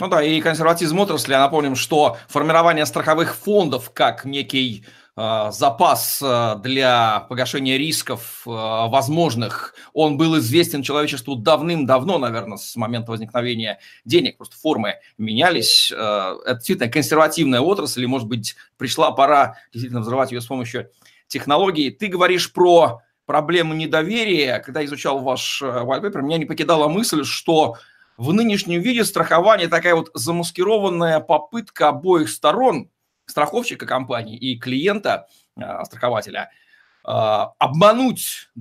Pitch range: 130-180 Hz